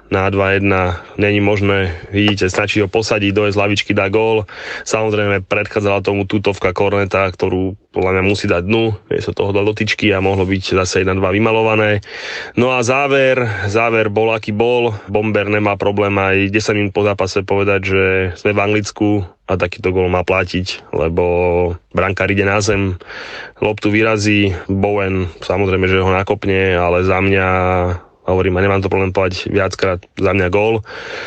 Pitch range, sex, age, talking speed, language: 95-105 Hz, male, 20-39, 165 wpm, Slovak